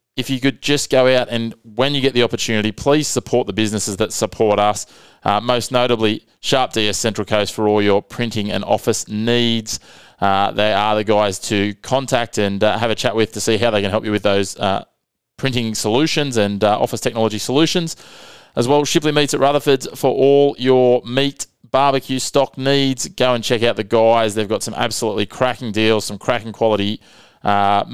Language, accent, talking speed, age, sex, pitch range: English, Australian, 200 wpm, 20-39, male, 105-125 Hz